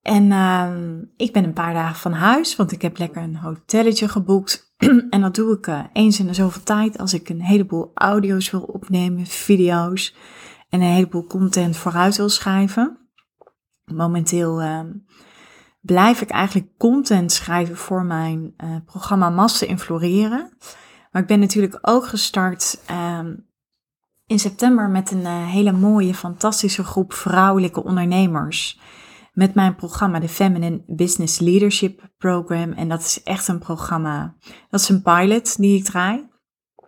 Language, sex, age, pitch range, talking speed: Dutch, female, 30-49, 170-200 Hz, 155 wpm